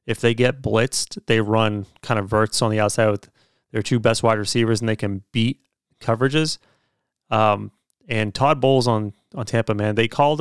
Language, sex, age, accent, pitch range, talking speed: English, male, 30-49, American, 110-130 Hz, 190 wpm